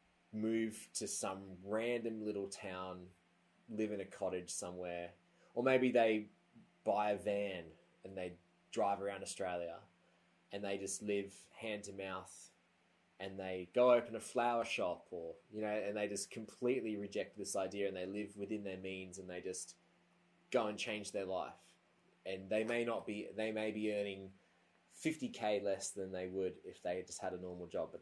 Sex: male